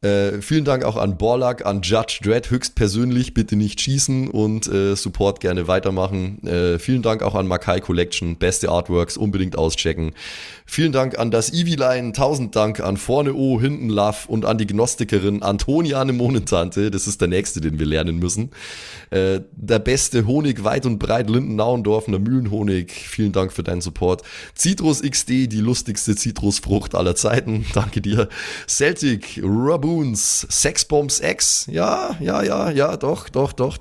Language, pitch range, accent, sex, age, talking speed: German, 95-125 Hz, German, male, 20-39, 165 wpm